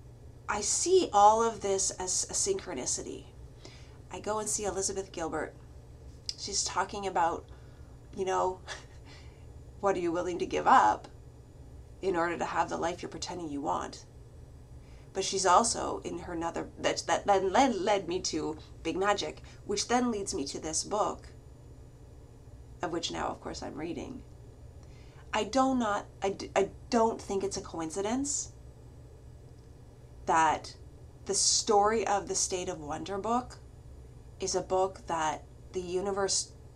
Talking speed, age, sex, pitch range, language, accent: 145 wpm, 30-49, female, 170-205 Hz, English, American